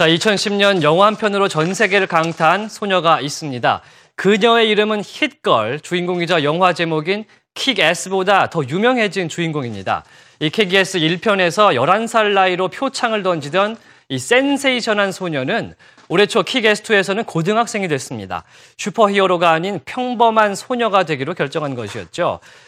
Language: Korean